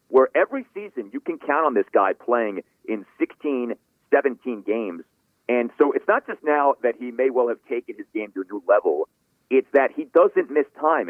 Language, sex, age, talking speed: English, male, 40-59, 205 wpm